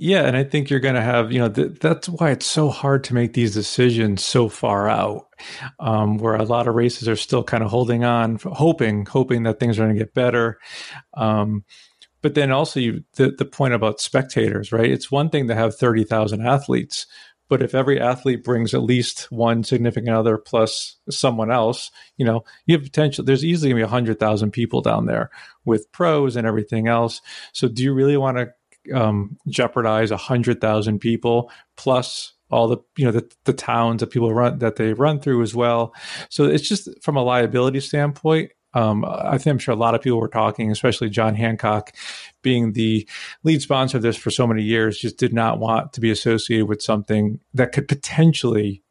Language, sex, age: English, male, 40-59